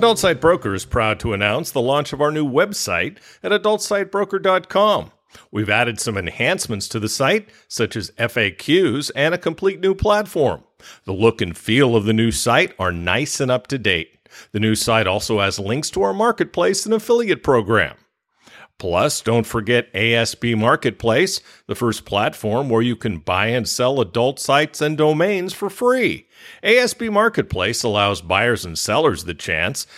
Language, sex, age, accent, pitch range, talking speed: English, male, 50-69, American, 105-165 Hz, 170 wpm